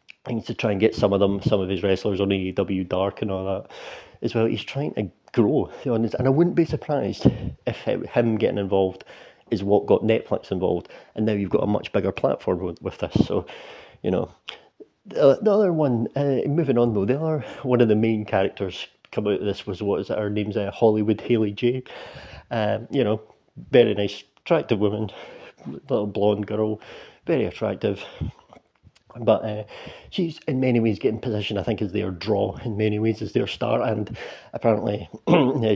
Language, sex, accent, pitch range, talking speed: English, male, British, 100-120 Hz, 195 wpm